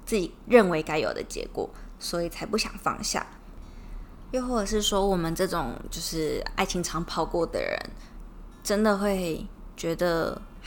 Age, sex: 20-39, female